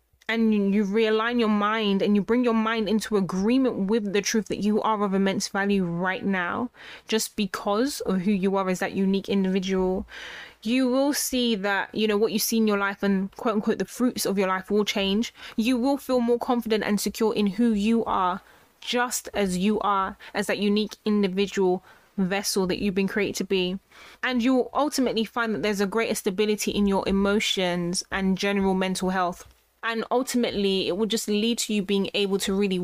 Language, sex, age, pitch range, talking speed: English, female, 20-39, 195-225 Hz, 200 wpm